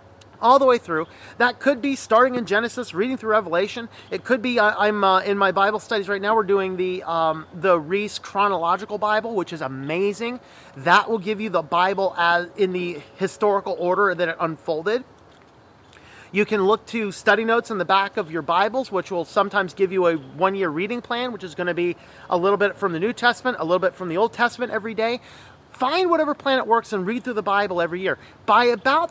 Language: English